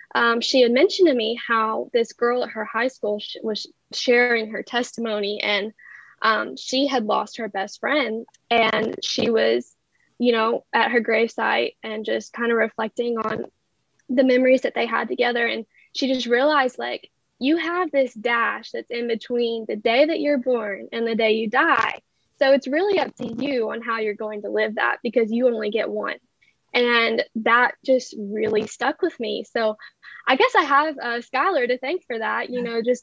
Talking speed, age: 195 wpm, 10-29